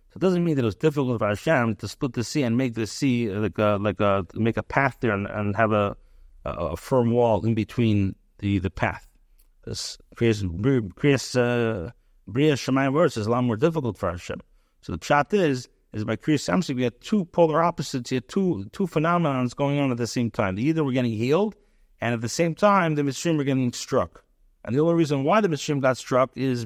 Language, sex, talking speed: English, male, 225 wpm